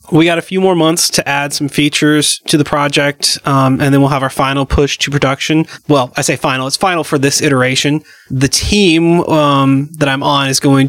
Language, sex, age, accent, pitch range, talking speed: English, male, 30-49, American, 135-155 Hz, 220 wpm